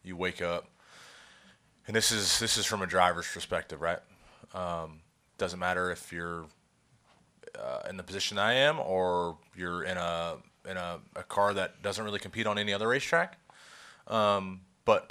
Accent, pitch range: American, 90-100 Hz